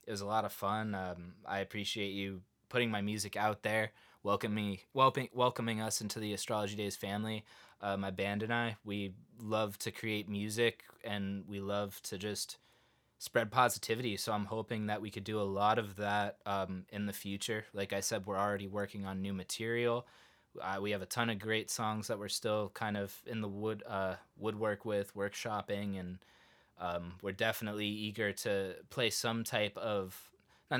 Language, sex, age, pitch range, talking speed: English, male, 20-39, 100-115 Hz, 185 wpm